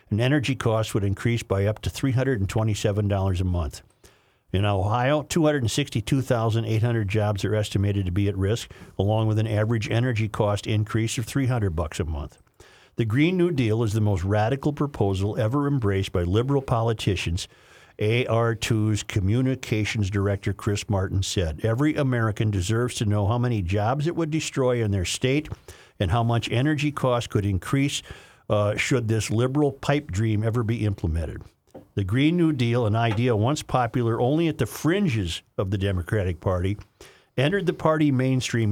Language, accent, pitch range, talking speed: English, American, 105-130 Hz, 160 wpm